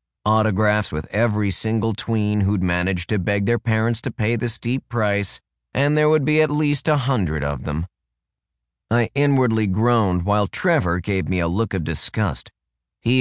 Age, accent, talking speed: 30-49, American, 175 wpm